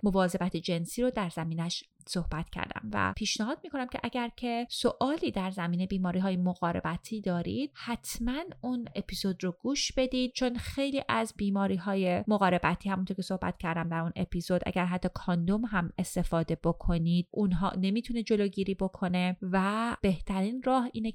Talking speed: 155 wpm